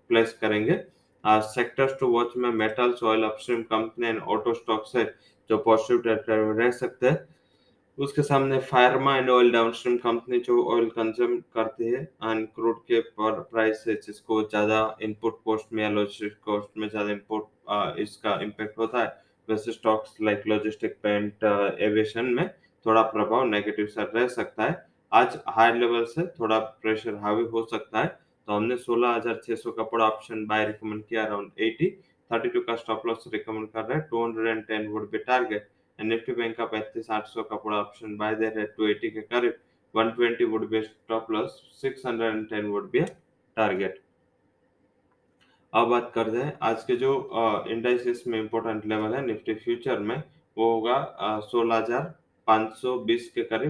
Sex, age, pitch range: male, 20-39, 110-120 Hz